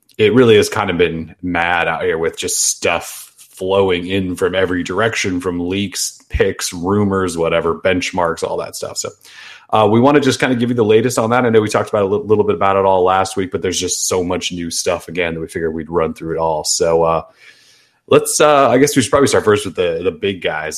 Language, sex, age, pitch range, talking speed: English, male, 30-49, 90-105 Hz, 250 wpm